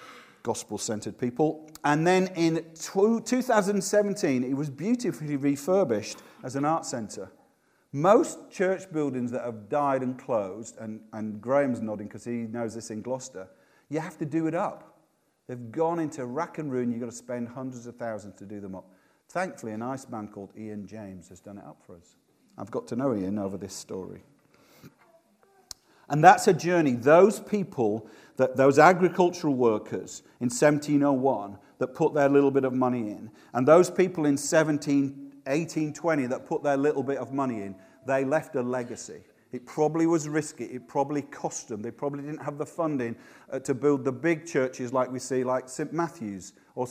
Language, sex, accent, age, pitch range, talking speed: English, male, British, 50-69, 120-165 Hz, 180 wpm